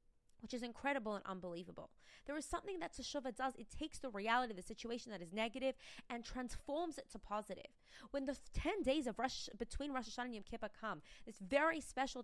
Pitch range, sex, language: 230-295 Hz, female, English